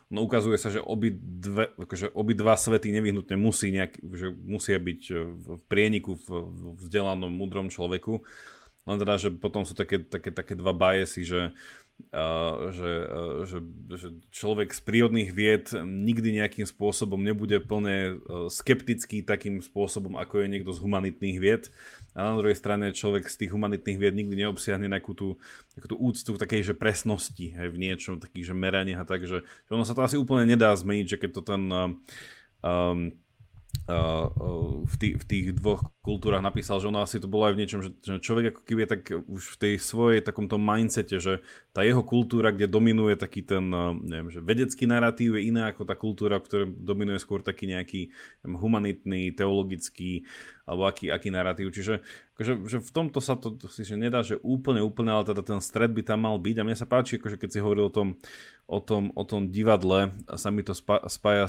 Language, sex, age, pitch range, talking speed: Slovak, male, 30-49, 95-110 Hz, 185 wpm